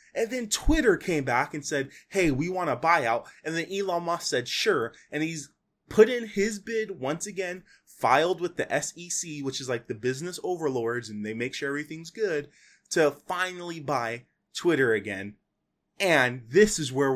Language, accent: English, American